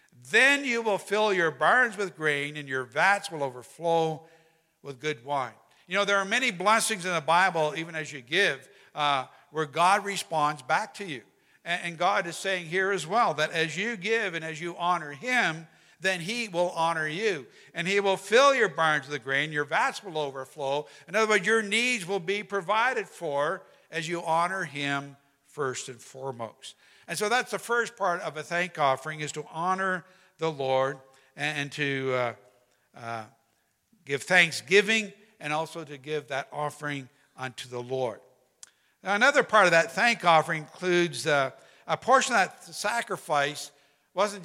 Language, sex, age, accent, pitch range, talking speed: English, male, 60-79, American, 145-195 Hz, 175 wpm